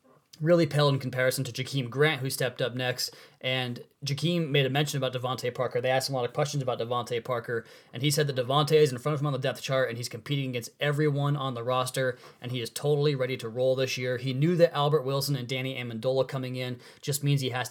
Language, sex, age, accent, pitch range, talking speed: English, male, 20-39, American, 125-145 Hz, 250 wpm